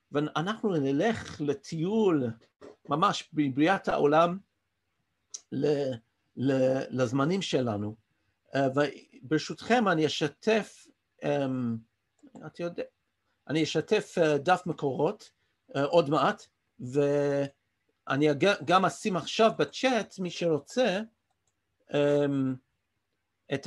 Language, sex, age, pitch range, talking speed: Hebrew, male, 50-69, 135-200 Hz, 80 wpm